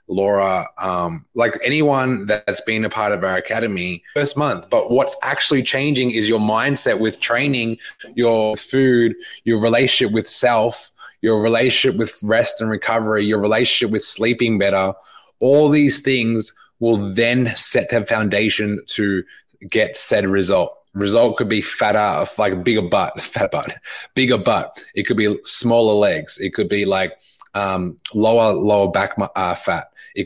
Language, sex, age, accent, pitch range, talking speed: English, male, 20-39, Australian, 100-120 Hz, 155 wpm